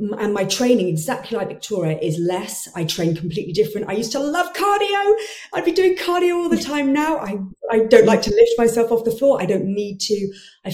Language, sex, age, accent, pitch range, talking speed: English, female, 30-49, British, 175-210 Hz, 225 wpm